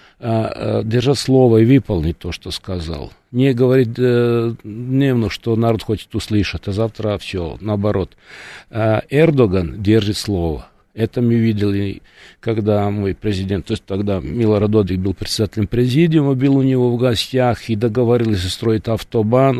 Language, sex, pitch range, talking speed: Russian, male, 110-145 Hz, 135 wpm